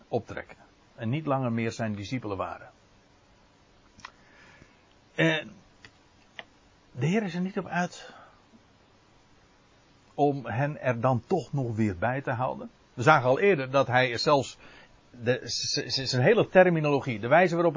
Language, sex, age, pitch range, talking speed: Dutch, male, 60-79, 110-160 Hz, 135 wpm